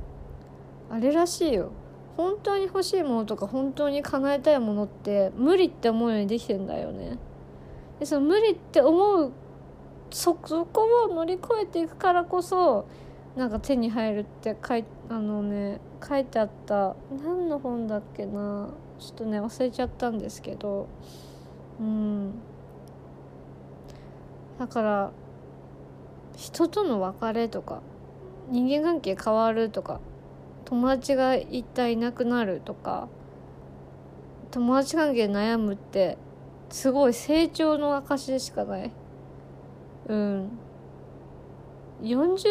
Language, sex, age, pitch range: Japanese, female, 20-39, 200-285 Hz